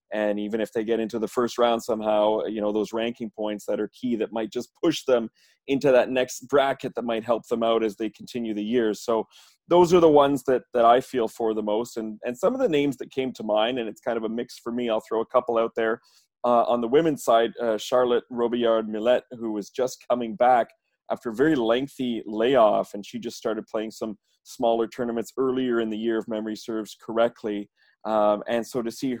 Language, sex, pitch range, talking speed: English, male, 110-120 Hz, 230 wpm